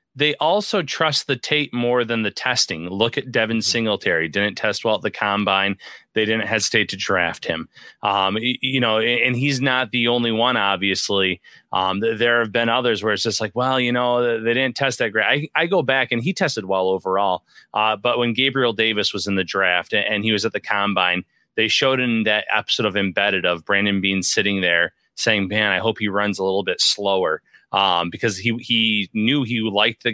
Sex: male